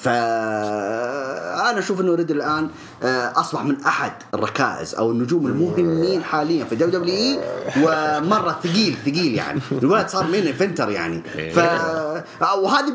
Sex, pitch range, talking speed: male, 130-205 Hz, 120 wpm